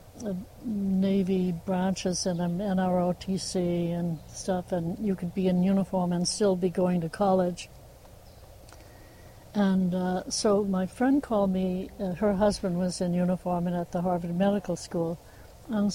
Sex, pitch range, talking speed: female, 175-200 Hz, 145 wpm